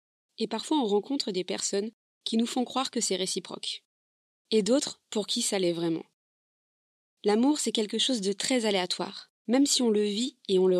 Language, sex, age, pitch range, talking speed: French, female, 20-39, 195-235 Hz, 195 wpm